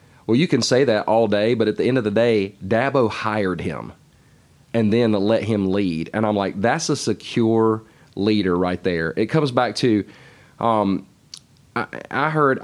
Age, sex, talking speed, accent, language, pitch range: 30-49, male, 185 wpm, American, English, 105-130 Hz